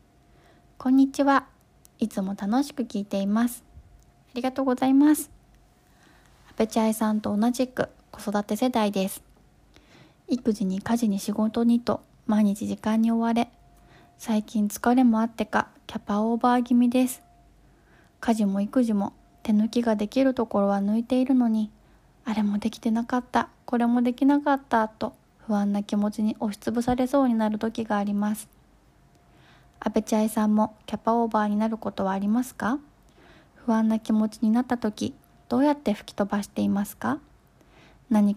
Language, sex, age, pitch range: Japanese, female, 20-39, 205-240 Hz